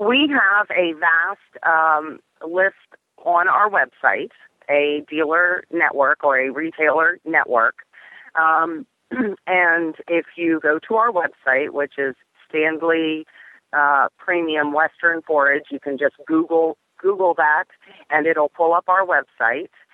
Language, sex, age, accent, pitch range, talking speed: English, female, 30-49, American, 145-175 Hz, 130 wpm